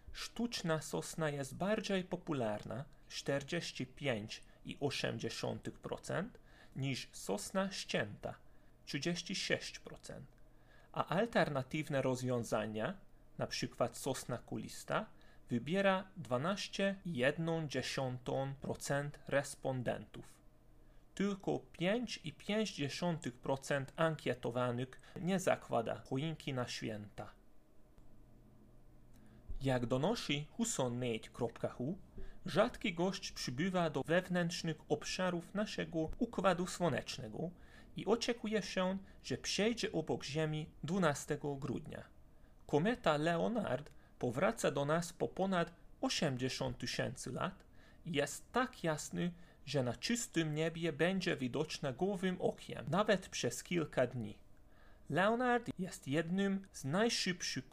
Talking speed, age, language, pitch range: 80 wpm, 30-49, Polish, 135-190 Hz